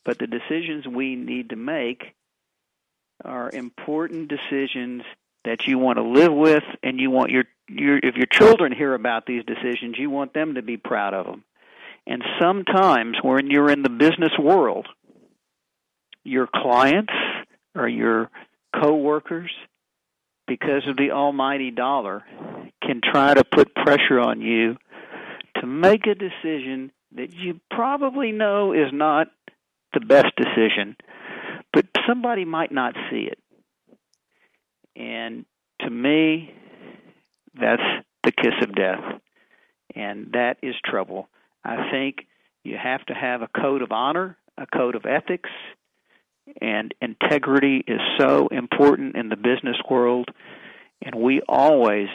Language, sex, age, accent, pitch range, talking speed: English, male, 50-69, American, 125-155 Hz, 135 wpm